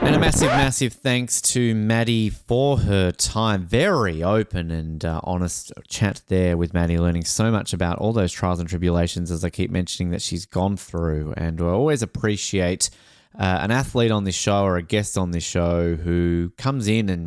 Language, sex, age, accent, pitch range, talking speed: English, male, 20-39, Australian, 85-115 Hz, 195 wpm